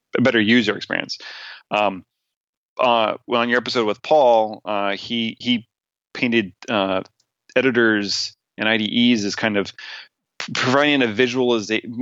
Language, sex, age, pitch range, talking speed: English, male, 30-49, 100-115 Hz, 130 wpm